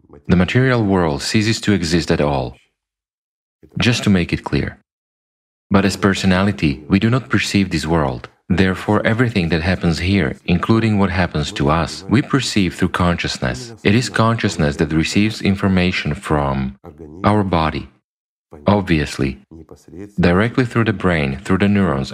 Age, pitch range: 40-59, 80-105 Hz